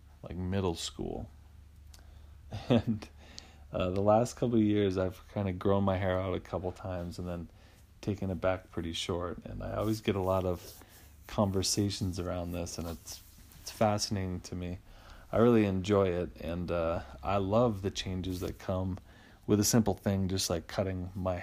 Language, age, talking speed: English, 30-49, 175 wpm